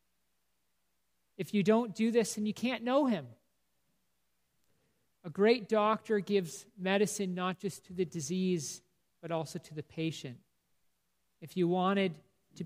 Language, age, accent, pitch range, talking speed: English, 40-59, American, 150-200 Hz, 135 wpm